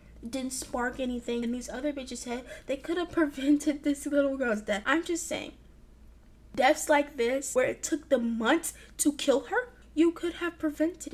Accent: American